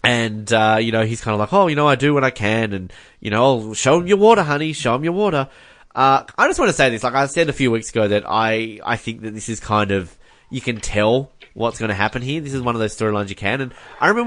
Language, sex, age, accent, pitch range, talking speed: English, male, 20-39, Australian, 105-135 Hz, 300 wpm